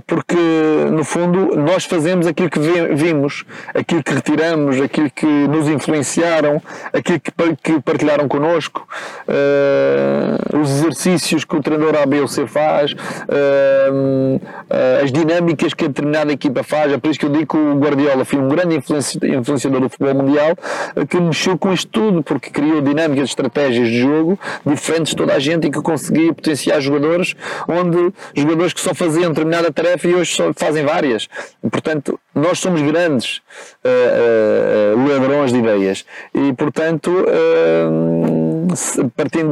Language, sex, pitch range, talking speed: Portuguese, male, 135-170 Hz, 140 wpm